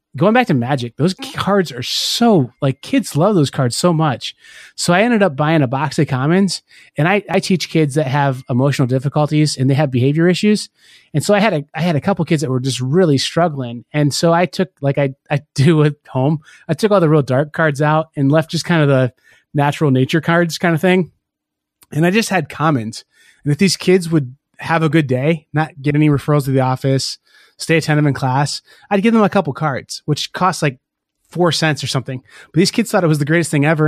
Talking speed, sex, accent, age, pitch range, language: 230 wpm, male, American, 20-39, 140-170 Hz, English